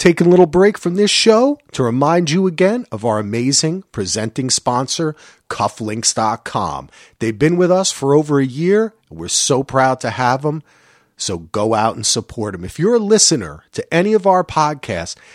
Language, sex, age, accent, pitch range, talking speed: English, male, 40-59, American, 110-180 Hz, 185 wpm